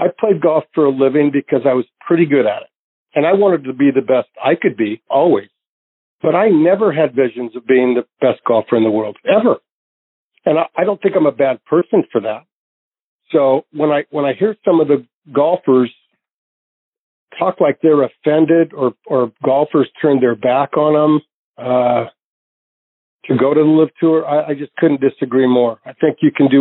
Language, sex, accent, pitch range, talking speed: English, male, American, 130-155 Hz, 200 wpm